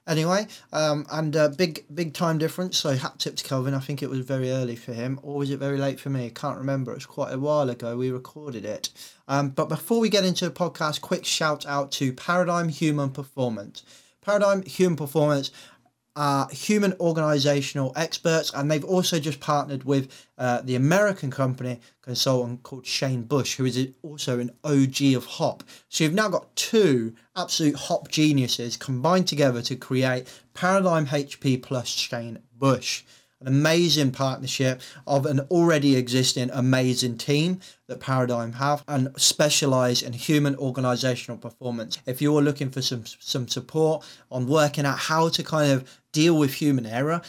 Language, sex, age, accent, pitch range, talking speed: English, male, 20-39, British, 130-155 Hz, 175 wpm